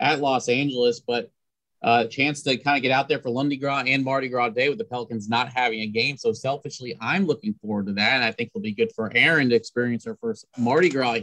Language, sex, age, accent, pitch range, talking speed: English, male, 30-49, American, 115-145 Hz, 250 wpm